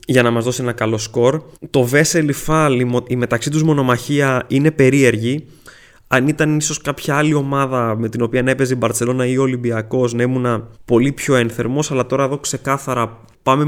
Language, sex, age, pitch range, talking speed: Greek, male, 20-39, 120-145 Hz, 180 wpm